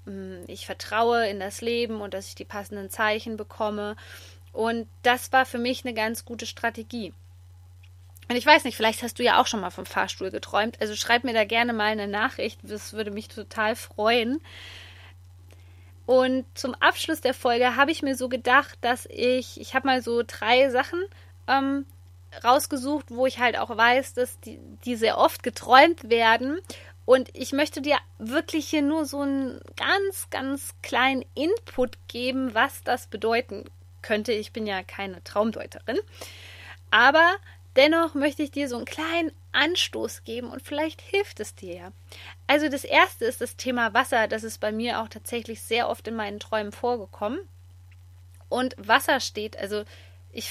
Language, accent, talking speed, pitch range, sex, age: German, German, 170 wpm, 190-260 Hz, female, 20-39